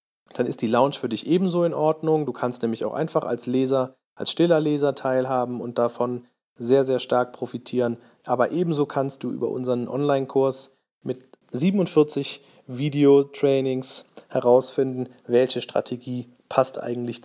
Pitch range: 120-150 Hz